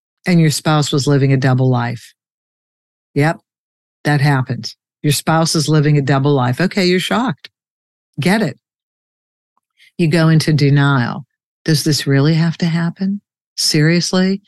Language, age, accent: English, 60-79, American